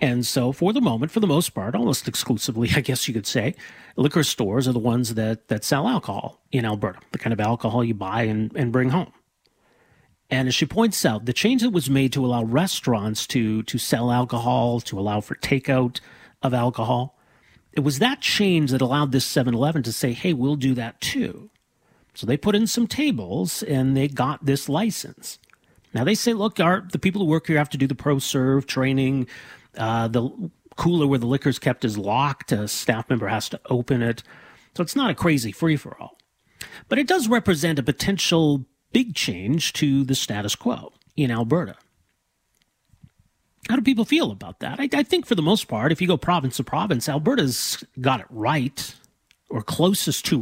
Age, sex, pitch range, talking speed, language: 40-59, male, 125-165 Hz, 195 wpm, English